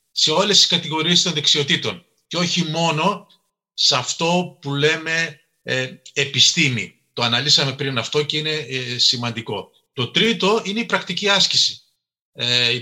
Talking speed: 145 wpm